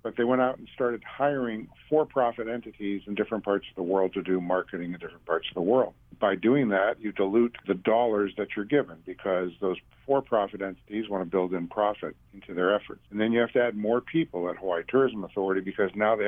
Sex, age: male, 60-79